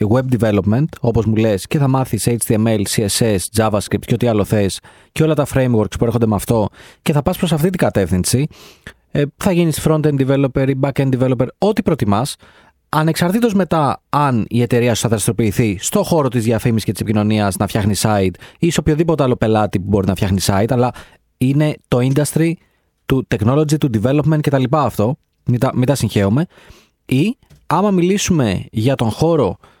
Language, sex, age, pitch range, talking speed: Greek, male, 30-49, 105-150 Hz, 180 wpm